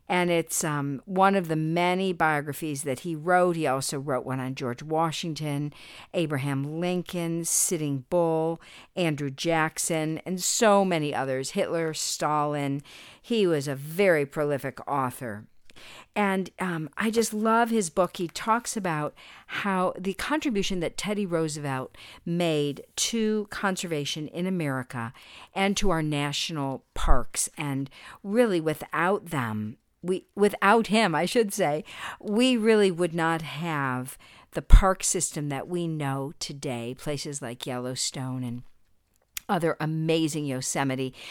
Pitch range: 140-185 Hz